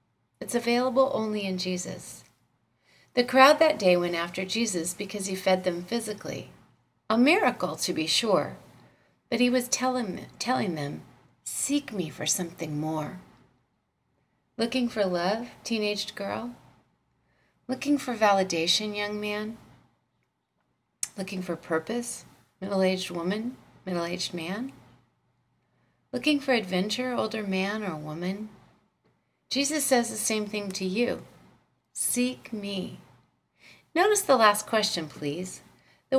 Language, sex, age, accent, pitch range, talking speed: English, female, 40-59, American, 180-245 Hz, 120 wpm